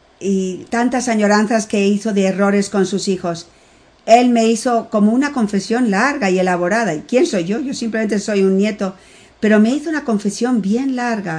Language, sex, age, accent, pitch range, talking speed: Spanish, female, 50-69, Spanish, 190-225 Hz, 185 wpm